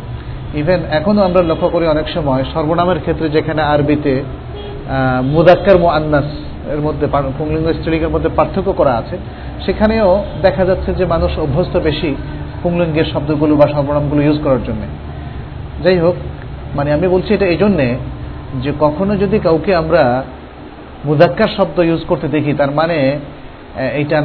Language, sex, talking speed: Bengali, male, 130 wpm